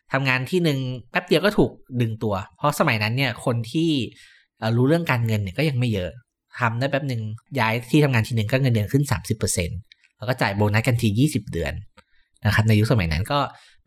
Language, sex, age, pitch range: Thai, male, 20-39, 105-140 Hz